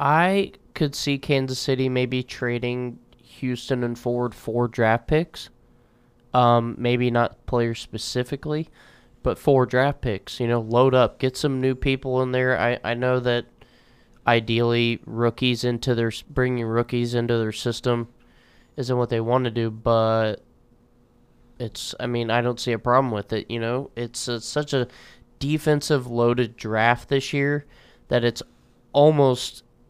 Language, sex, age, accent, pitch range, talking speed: English, male, 20-39, American, 115-130 Hz, 155 wpm